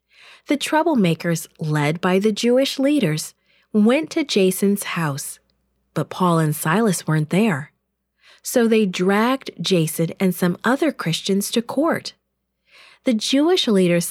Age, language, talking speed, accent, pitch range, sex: 40-59, English, 130 wpm, American, 165-235 Hz, female